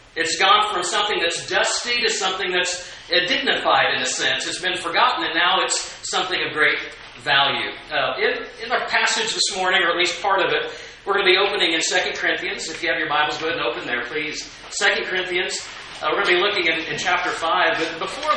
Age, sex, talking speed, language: 40-59, male, 225 wpm, English